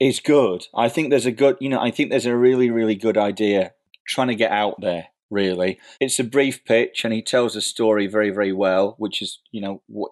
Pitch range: 100-115 Hz